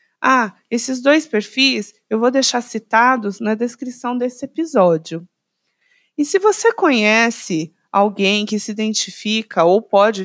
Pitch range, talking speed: 190-275 Hz, 130 wpm